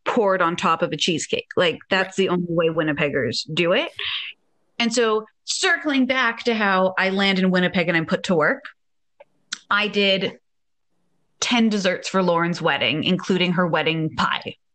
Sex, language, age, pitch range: female, English, 20-39, 185-275 Hz